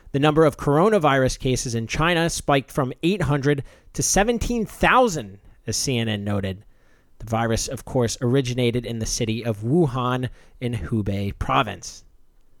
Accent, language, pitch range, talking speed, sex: American, English, 120-160 Hz, 135 wpm, male